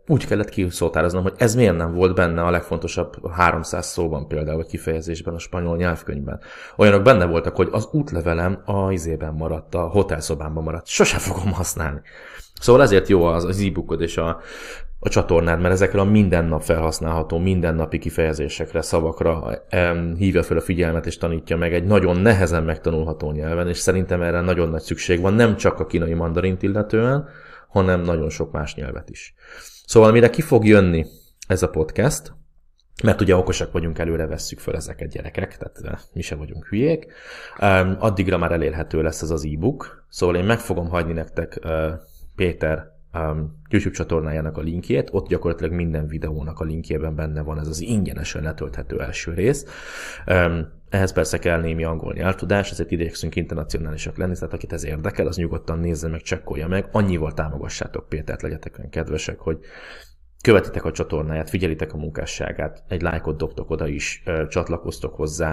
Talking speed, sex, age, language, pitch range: 165 wpm, male, 20-39, Hungarian, 80-95 Hz